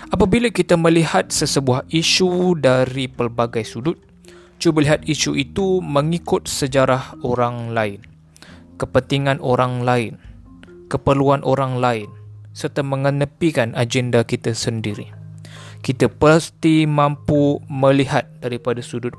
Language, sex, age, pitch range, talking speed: Malay, male, 20-39, 120-165 Hz, 105 wpm